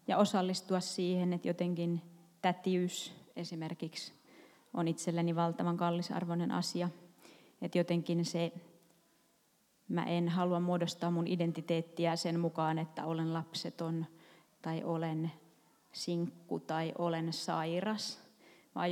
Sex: female